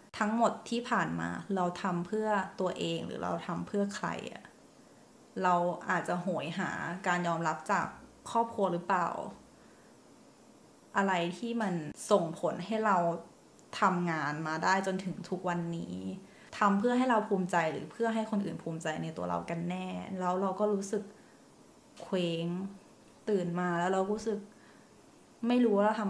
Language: Thai